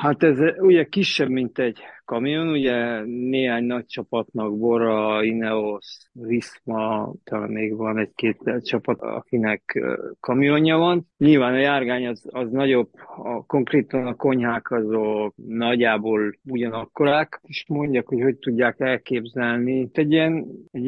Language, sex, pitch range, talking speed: Hungarian, male, 115-145 Hz, 120 wpm